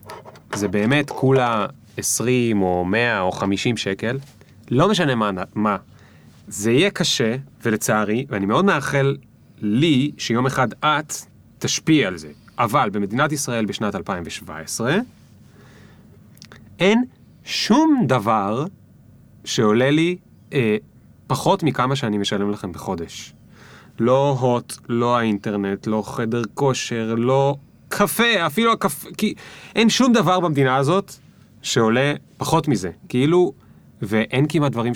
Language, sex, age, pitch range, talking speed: Hebrew, male, 30-49, 110-160 Hz, 115 wpm